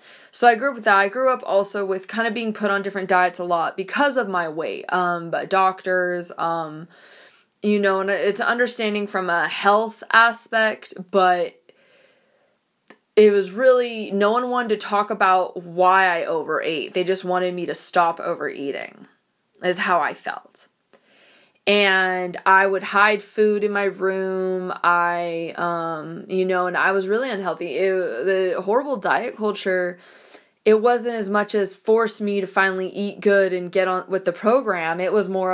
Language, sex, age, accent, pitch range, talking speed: English, female, 20-39, American, 180-215 Hz, 175 wpm